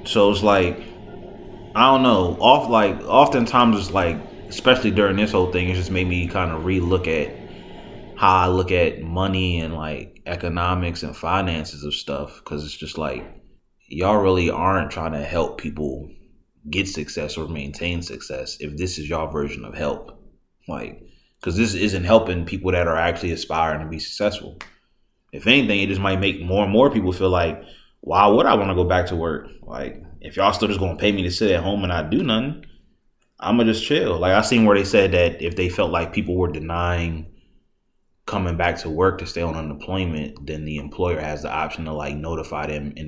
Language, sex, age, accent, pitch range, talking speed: English, male, 20-39, American, 80-95 Hz, 210 wpm